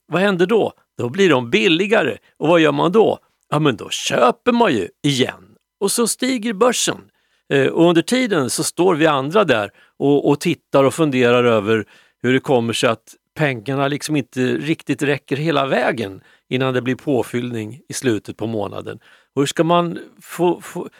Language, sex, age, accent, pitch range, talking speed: Swedish, male, 50-69, native, 140-205 Hz, 175 wpm